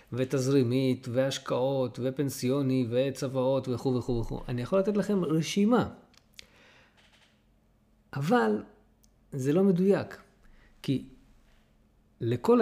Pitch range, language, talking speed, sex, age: 125-180 Hz, Hebrew, 85 wpm, male, 40-59